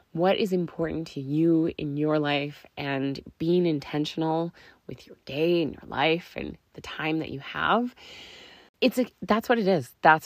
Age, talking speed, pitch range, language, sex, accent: 20-39, 175 wpm, 145-185 Hz, English, female, American